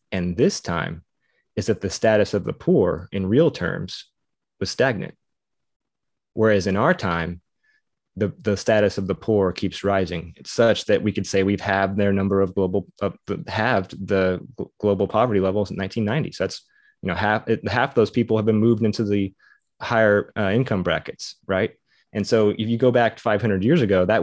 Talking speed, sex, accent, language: 190 wpm, male, American, English